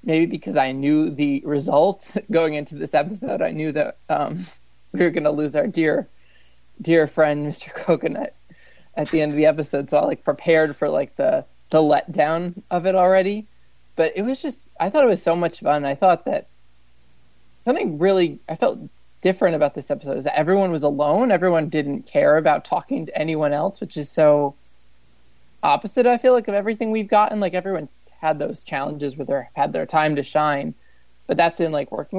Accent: American